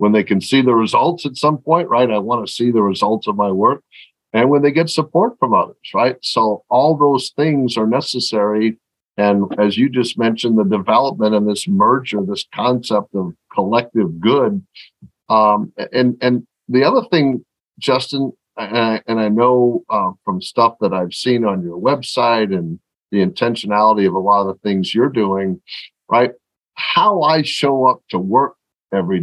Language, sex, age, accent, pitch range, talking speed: English, male, 50-69, American, 105-130 Hz, 180 wpm